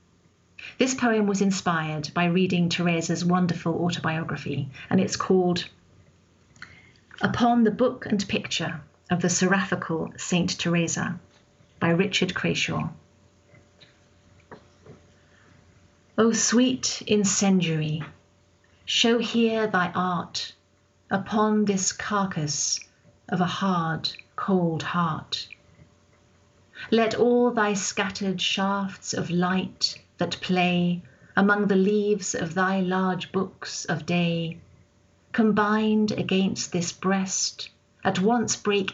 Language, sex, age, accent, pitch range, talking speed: English, female, 40-59, British, 155-200 Hz, 100 wpm